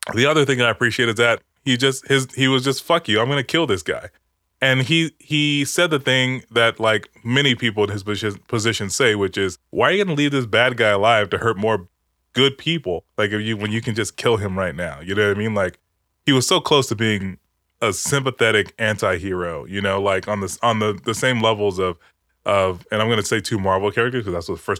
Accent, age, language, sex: American, 20-39, English, male